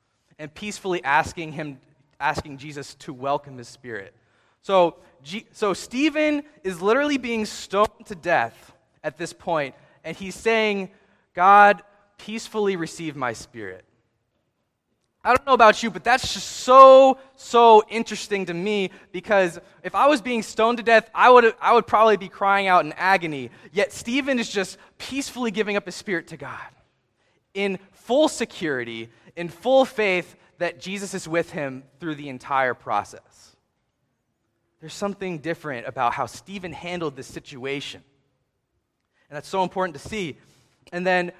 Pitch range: 140-215 Hz